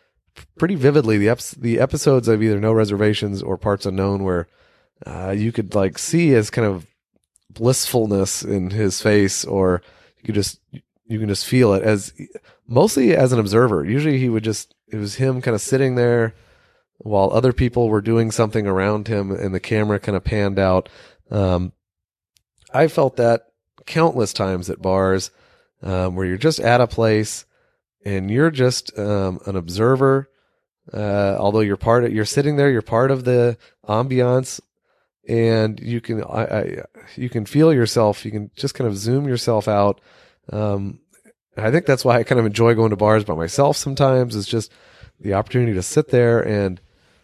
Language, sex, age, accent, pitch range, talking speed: English, male, 30-49, American, 100-120 Hz, 175 wpm